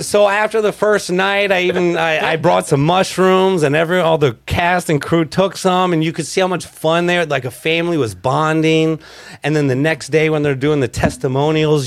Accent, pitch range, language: American, 120-160 Hz, English